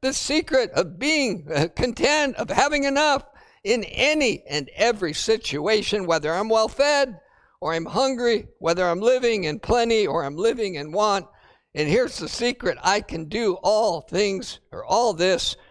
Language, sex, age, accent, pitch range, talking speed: English, male, 50-69, American, 185-245 Hz, 155 wpm